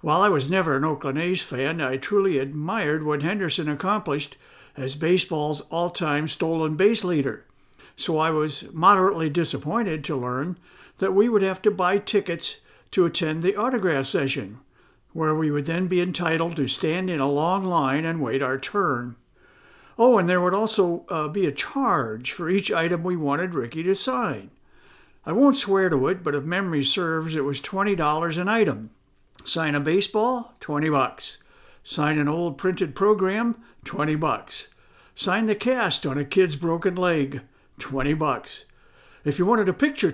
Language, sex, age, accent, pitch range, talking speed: English, male, 60-79, American, 145-190 Hz, 170 wpm